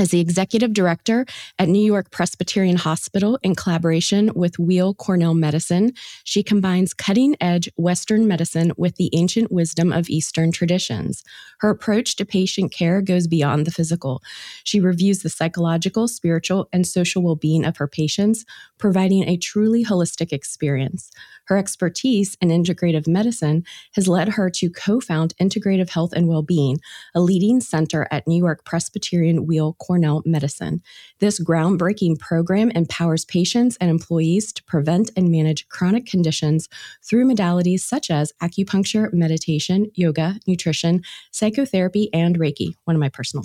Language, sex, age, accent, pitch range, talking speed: English, female, 30-49, American, 165-200 Hz, 145 wpm